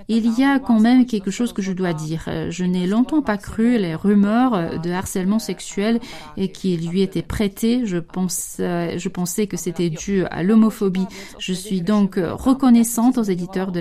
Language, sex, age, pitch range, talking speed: French, female, 30-49, 180-220 Hz, 180 wpm